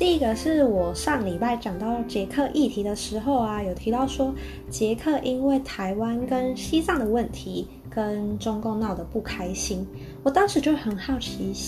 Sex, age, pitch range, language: female, 20-39, 210-275 Hz, Chinese